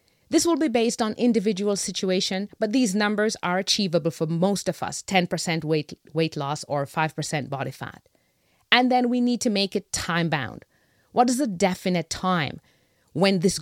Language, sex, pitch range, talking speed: English, female, 160-225 Hz, 170 wpm